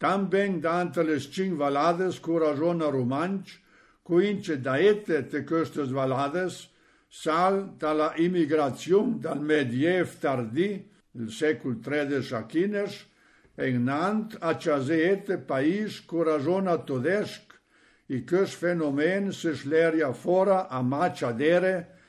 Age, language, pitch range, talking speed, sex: 60-79, Italian, 145-185 Hz, 105 wpm, male